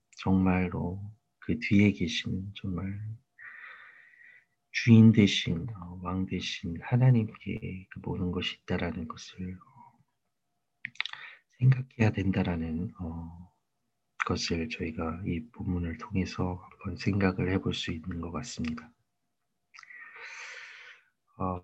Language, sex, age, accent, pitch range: Korean, male, 40-59, native, 90-110 Hz